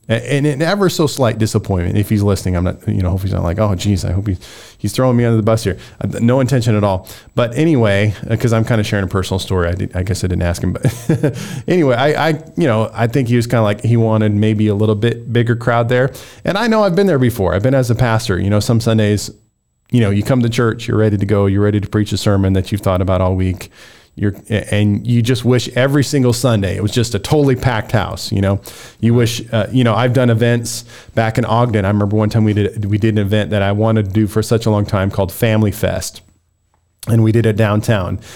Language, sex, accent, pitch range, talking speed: English, male, American, 100-120 Hz, 260 wpm